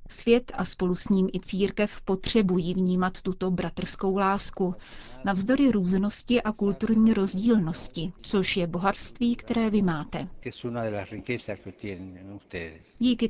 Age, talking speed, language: 40-59, 110 wpm, Czech